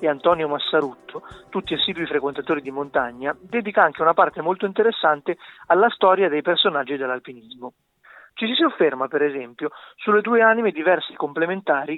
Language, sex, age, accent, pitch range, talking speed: Italian, male, 30-49, native, 145-185 Hz, 150 wpm